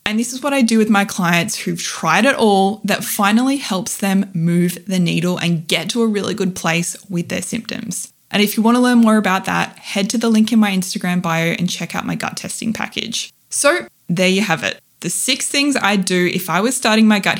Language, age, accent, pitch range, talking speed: English, 20-39, Australian, 175-225 Hz, 240 wpm